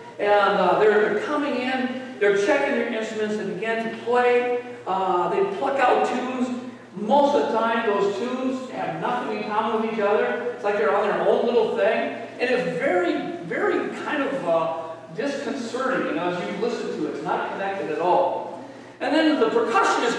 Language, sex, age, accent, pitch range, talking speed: English, male, 40-59, American, 200-250 Hz, 185 wpm